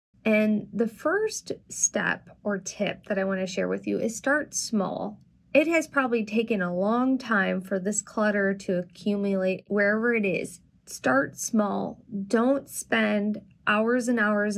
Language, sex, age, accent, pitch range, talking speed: English, female, 20-39, American, 195-225 Hz, 155 wpm